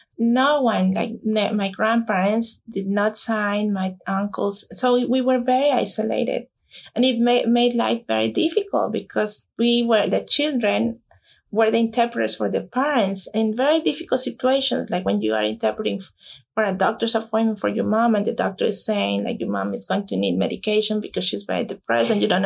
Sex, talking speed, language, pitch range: female, 180 wpm, English, 205-255 Hz